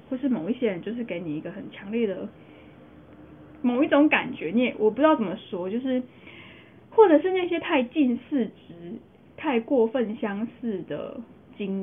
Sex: female